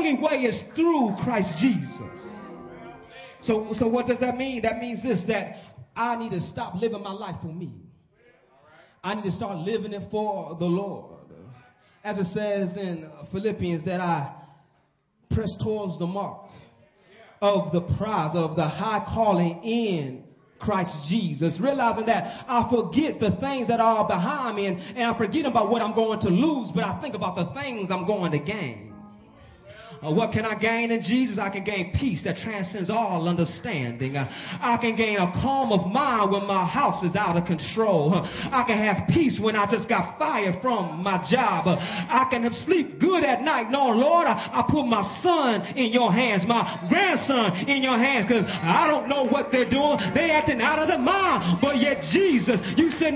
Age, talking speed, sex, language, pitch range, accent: 30-49, 190 wpm, male, English, 185-255 Hz, American